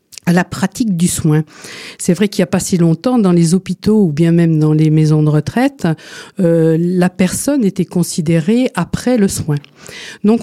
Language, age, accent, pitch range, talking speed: French, 50-69, French, 165-210 Hz, 190 wpm